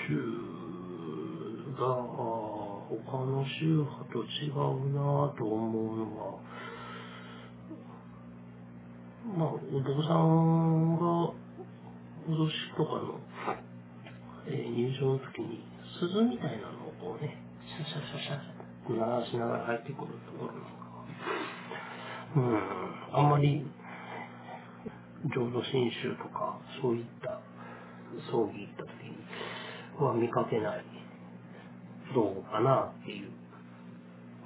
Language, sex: Japanese, male